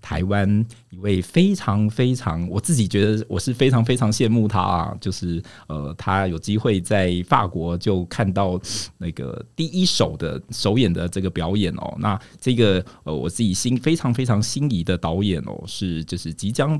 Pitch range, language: 90-115 Hz, Chinese